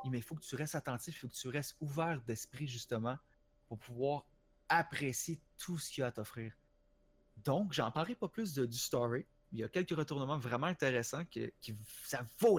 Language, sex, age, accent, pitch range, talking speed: French, male, 30-49, Canadian, 125-170 Hz, 210 wpm